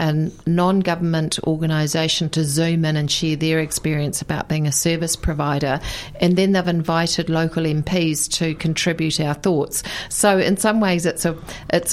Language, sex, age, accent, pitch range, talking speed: English, female, 40-59, Australian, 155-170 Hz, 145 wpm